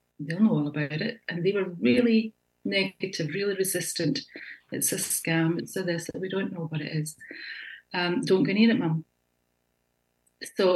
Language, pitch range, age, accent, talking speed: English, 155-195 Hz, 40-59, British, 180 wpm